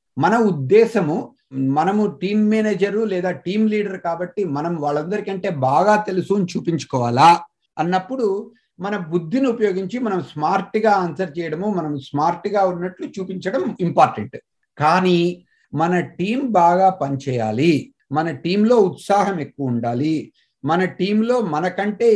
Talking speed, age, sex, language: 110 wpm, 50-69, male, Telugu